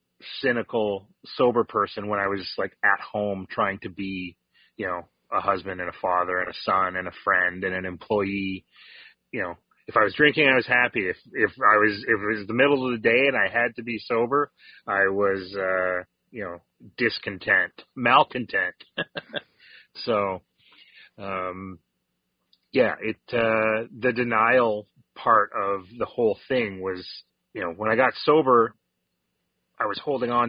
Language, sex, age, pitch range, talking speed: English, male, 30-49, 95-115 Hz, 165 wpm